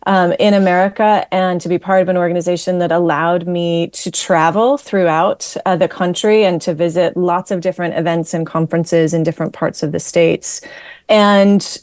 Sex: female